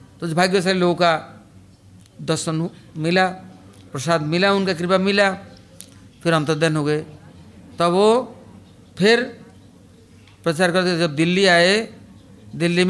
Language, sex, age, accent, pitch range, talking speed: English, male, 50-69, Indian, 110-175 Hz, 110 wpm